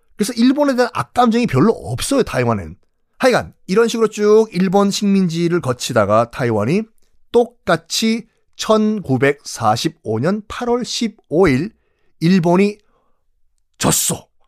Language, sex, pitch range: Korean, male, 130-215 Hz